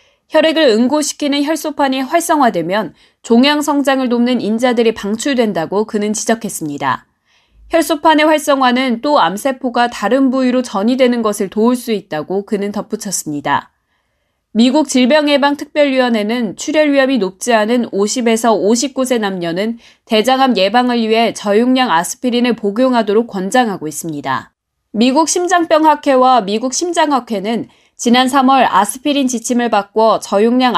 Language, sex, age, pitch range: Korean, female, 20-39, 210-270 Hz